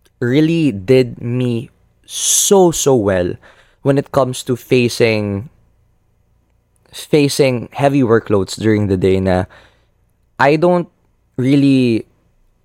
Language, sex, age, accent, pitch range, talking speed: Filipino, male, 20-39, native, 100-125 Hz, 100 wpm